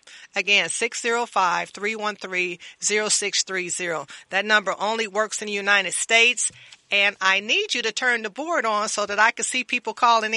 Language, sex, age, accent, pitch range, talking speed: English, female, 40-59, American, 200-250 Hz, 150 wpm